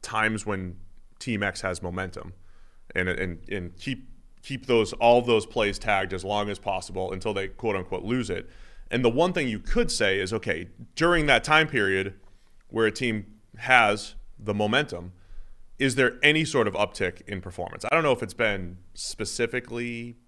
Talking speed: 180 wpm